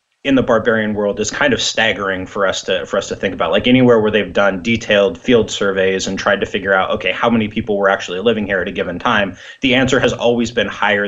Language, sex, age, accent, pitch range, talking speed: English, male, 30-49, American, 100-115 Hz, 255 wpm